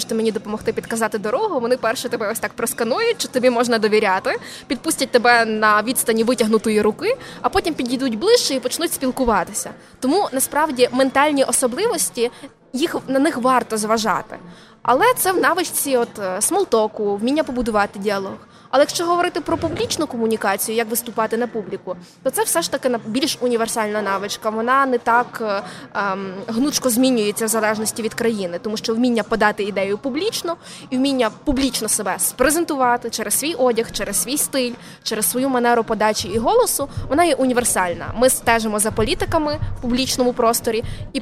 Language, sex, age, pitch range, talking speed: Ukrainian, female, 20-39, 220-270 Hz, 160 wpm